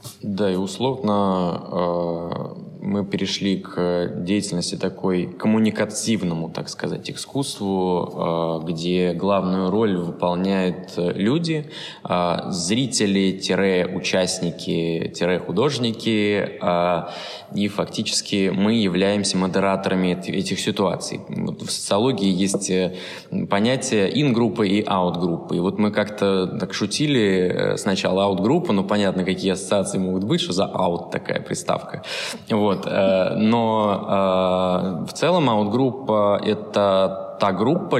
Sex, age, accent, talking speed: male, 20-39, native, 105 wpm